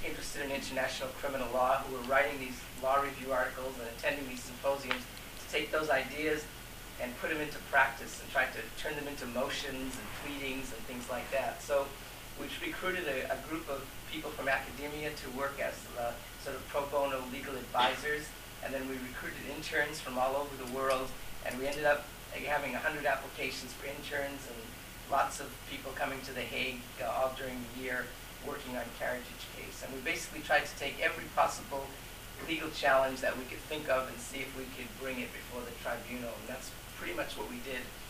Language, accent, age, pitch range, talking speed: English, American, 40-59, 125-140 Hz, 200 wpm